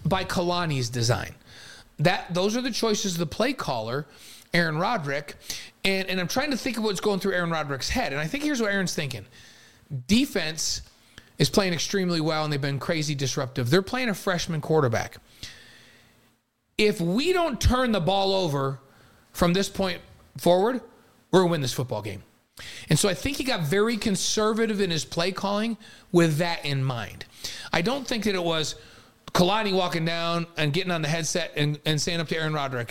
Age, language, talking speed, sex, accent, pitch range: 40-59, English, 190 wpm, male, American, 140-195 Hz